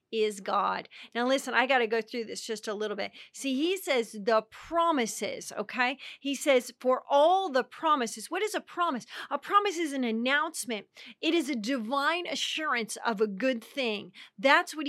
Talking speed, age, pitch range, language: 185 wpm, 40-59, 225-280 Hz, English